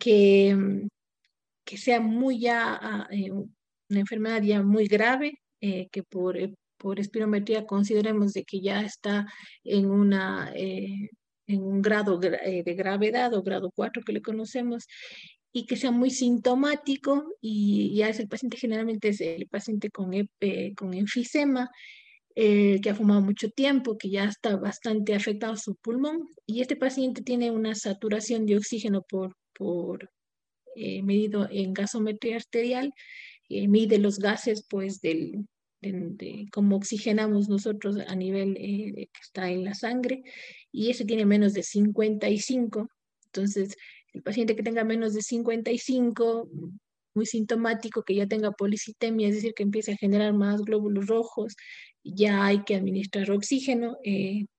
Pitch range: 200-230 Hz